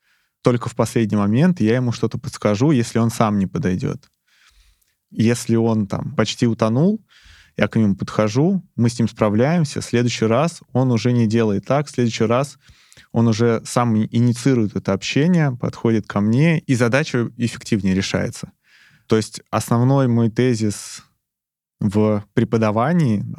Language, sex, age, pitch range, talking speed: Russian, male, 20-39, 110-130 Hz, 145 wpm